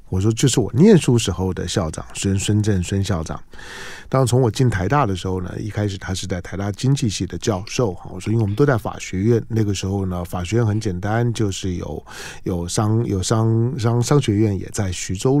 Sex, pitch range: male, 95-125 Hz